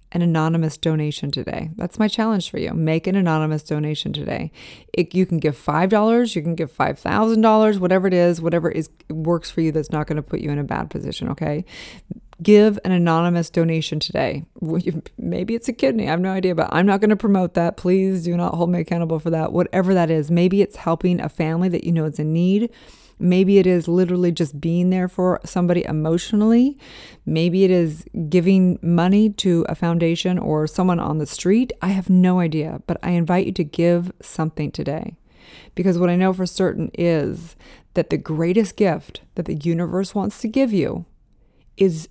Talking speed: 195 wpm